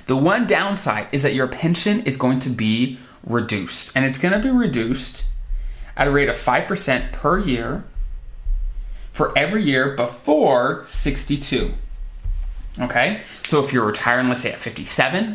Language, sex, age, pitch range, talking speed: English, male, 20-39, 115-145 Hz, 155 wpm